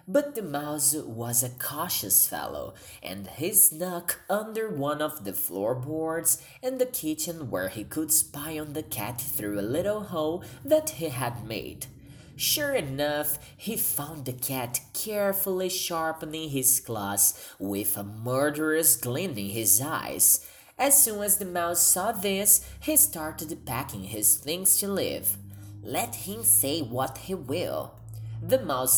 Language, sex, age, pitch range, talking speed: English, male, 20-39, 125-175 Hz, 150 wpm